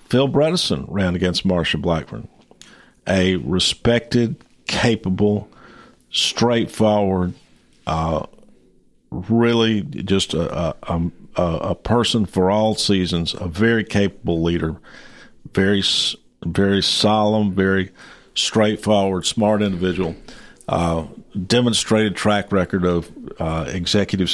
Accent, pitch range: American, 90-110 Hz